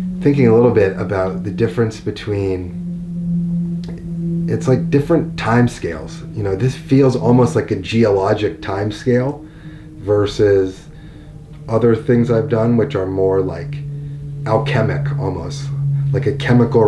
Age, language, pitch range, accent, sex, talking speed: 30-49, English, 100-130 Hz, American, male, 130 wpm